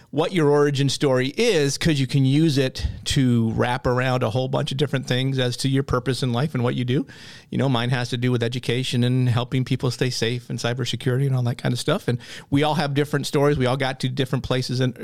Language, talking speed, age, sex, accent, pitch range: English, 250 wpm, 40-59, male, American, 120-145 Hz